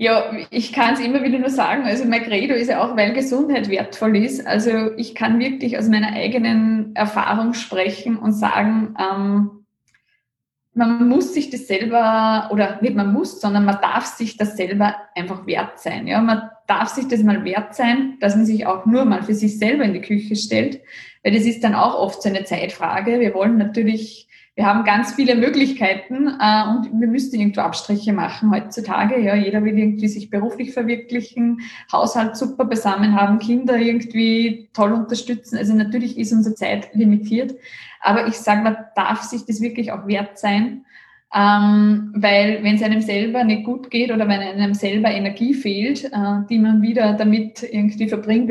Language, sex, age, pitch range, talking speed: German, female, 20-39, 205-235 Hz, 185 wpm